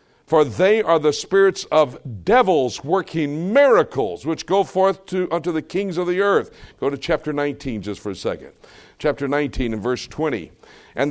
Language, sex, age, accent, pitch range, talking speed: English, male, 60-79, American, 110-180 Hz, 180 wpm